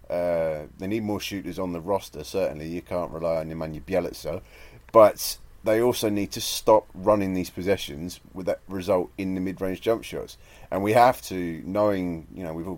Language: English